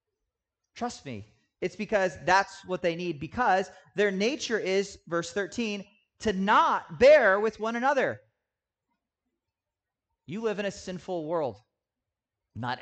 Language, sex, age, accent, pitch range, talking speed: English, male, 30-49, American, 160-210 Hz, 125 wpm